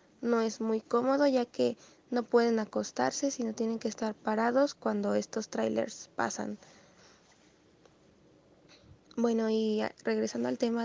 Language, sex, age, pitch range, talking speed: Greek, female, 20-39, 215-245 Hz, 135 wpm